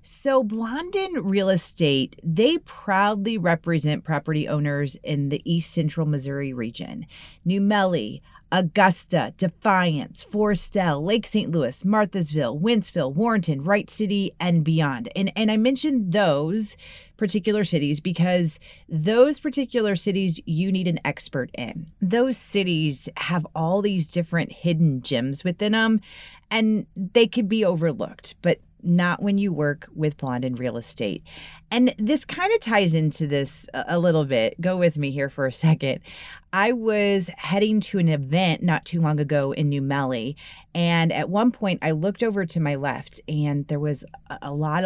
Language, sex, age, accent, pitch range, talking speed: English, female, 30-49, American, 150-205 Hz, 155 wpm